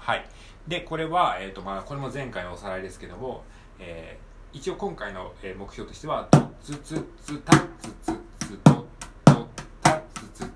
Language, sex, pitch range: Japanese, male, 95-130 Hz